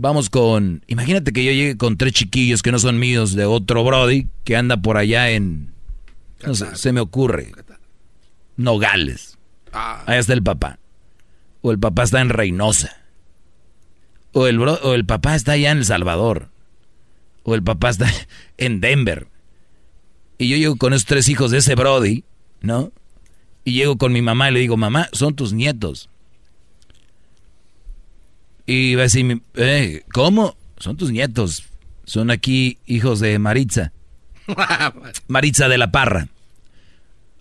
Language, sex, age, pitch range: Spanish, male, 40-59, 95-130 Hz